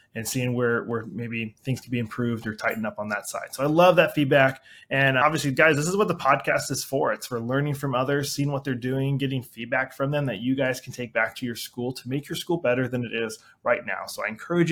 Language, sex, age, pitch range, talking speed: English, male, 20-39, 125-150 Hz, 265 wpm